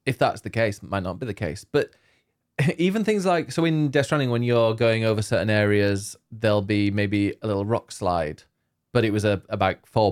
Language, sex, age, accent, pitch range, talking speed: English, male, 20-39, British, 95-120 Hz, 220 wpm